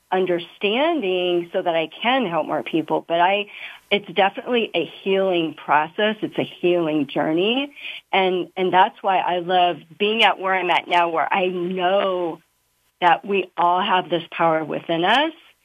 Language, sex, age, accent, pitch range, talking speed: English, female, 40-59, American, 175-215 Hz, 160 wpm